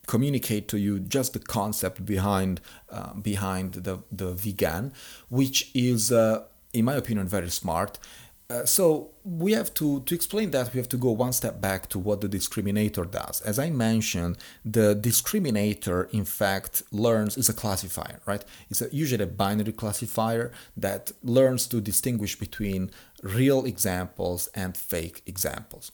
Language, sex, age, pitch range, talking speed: English, male, 40-59, 95-120 Hz, 155 wpm